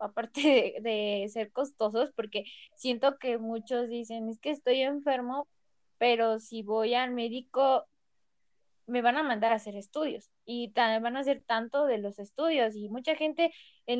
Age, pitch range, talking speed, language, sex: 10-29, 220-265 Hz, 165 wpm, Spanish, female